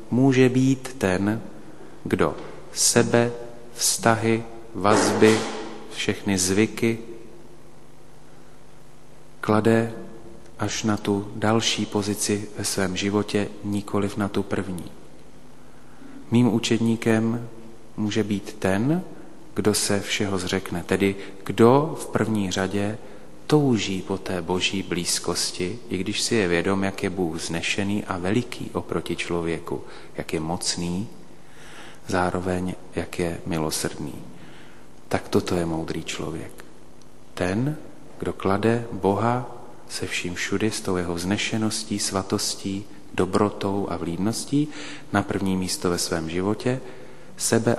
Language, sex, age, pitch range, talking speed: Slovak, male, 30-49, 95-115 Hz, 110 wpm